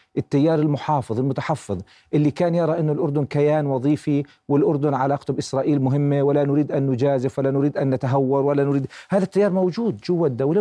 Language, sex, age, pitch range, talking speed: Arabic, male, 40-59, 140-180 Hz, 165 wpm